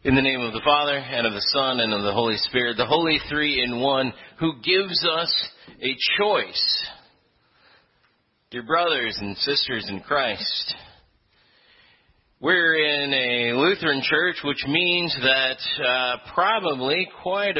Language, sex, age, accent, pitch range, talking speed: English, male, 40-59, American, 130-180 Hz, 145 wpm